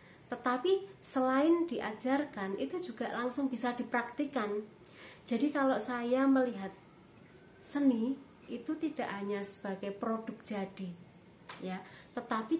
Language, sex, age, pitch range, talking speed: Indonesian, female, 30-49, 185-225 Hz, 100 wpm